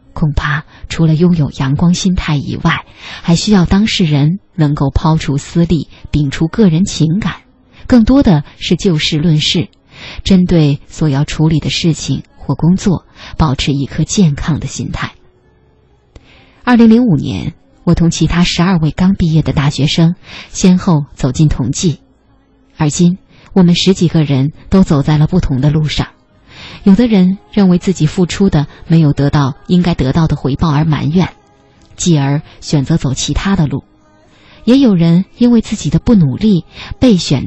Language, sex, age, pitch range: Chinese, female, 20-39, 140-180 Hz